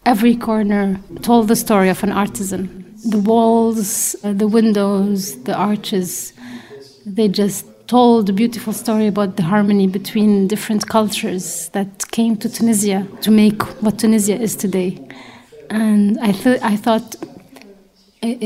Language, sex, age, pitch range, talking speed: English, female, 30-49, 195-220 Hz, 135 wpm